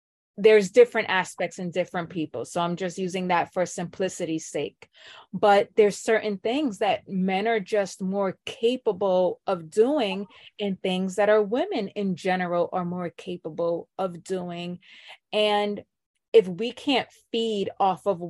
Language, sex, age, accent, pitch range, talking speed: English, female, 30-49, American, 180-205 Hz, 150 wpm